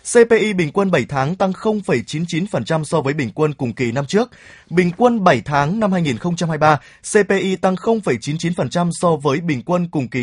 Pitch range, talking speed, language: 145-195 Hz, 175 wpm, Vietnamese